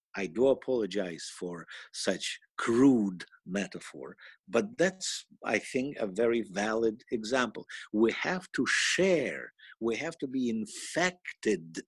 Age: 50-69